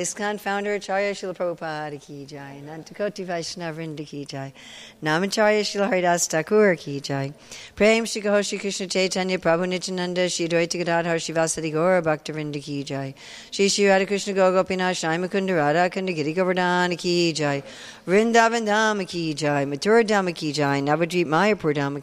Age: 50-69